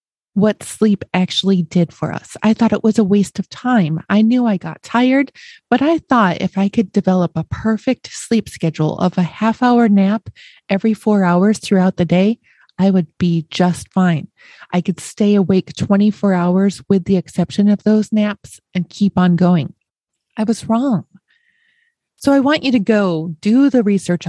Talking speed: 185 wpm